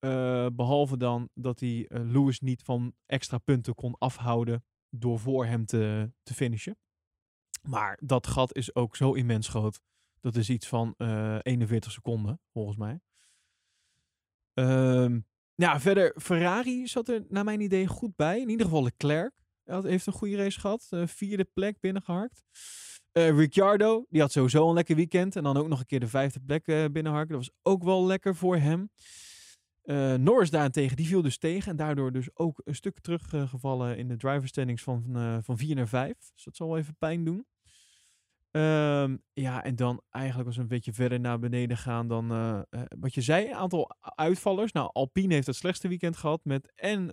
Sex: male